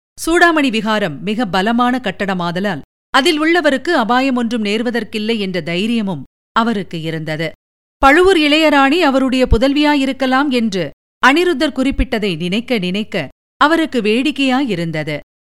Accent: native